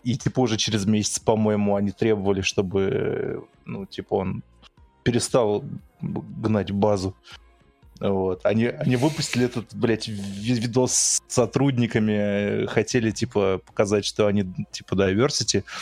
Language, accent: Russian, native